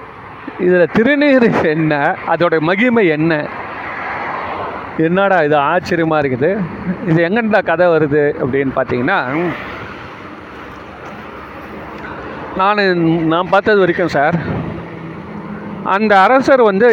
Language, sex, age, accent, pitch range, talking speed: Tamil, male, 30-49, native, 160-210 Hz, 85 wpm